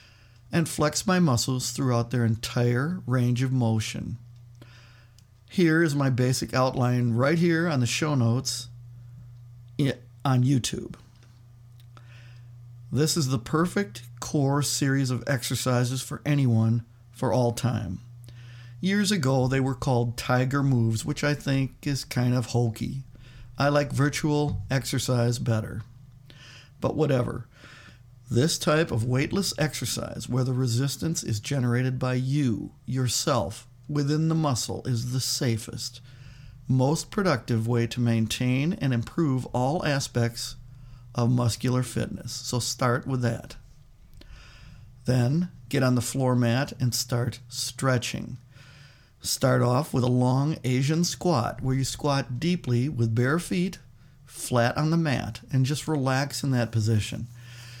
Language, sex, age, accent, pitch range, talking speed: English, male, 50-69, American, 120-135 Hz, 130 wpm